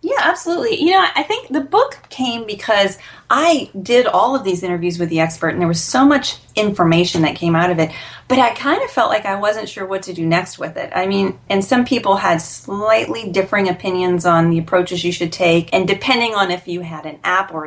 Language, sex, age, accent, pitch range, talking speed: English, female, 30-49, American, 165-215 Hz, 235 wpm